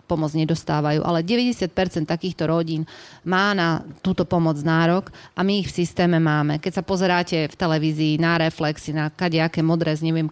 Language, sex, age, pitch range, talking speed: Slovak, female, 30-49, 155-185 Hz, 170 wpm